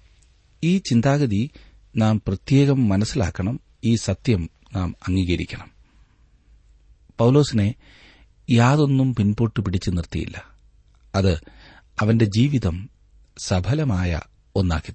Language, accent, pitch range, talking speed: Malayalam, native, 85-105 Hz, 75 wpm